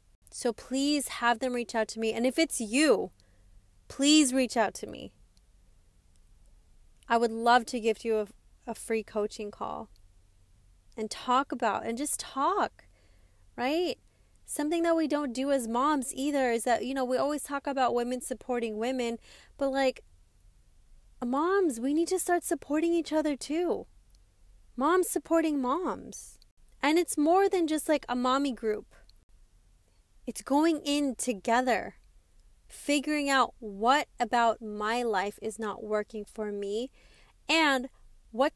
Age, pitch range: 20-39, 210-285 Hz